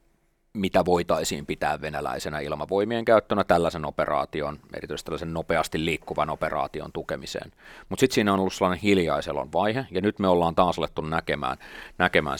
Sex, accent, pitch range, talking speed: male, native, 80-100 Hz, 145 wpm